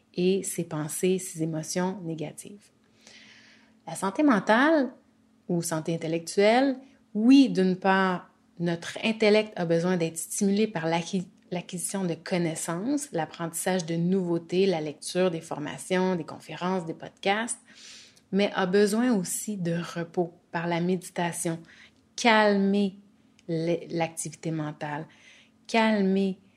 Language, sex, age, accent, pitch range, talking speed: French, female, 30-49, Canadian, 165-215 Hz, 110 wpm